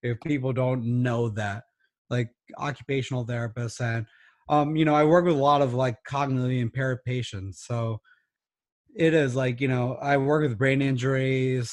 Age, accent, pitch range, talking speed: 30-49, American, 120-145 Hz, 170 wpm